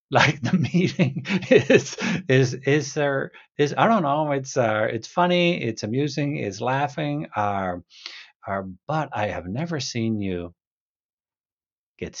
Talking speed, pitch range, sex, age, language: 145 wpm, 100-145 Hz, male, 60-79, Danish